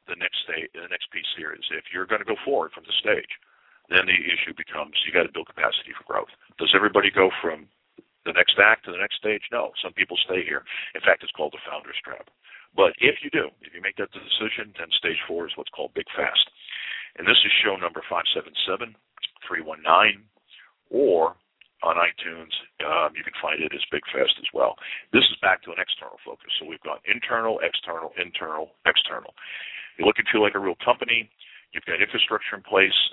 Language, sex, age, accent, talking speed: English, male, 50-69, American, 210 wpm